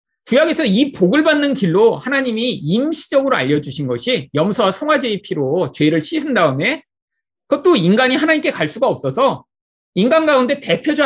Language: Korean